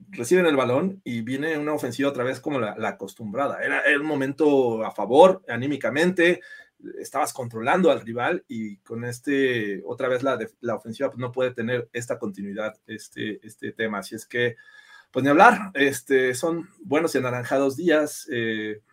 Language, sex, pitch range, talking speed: Spanish, male, 120-190 Hz, 165 wpm